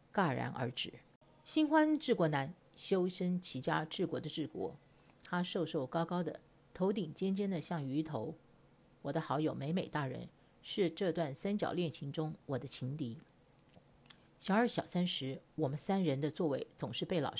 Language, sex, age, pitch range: Chinese, female, 50-69, 150-190 Hz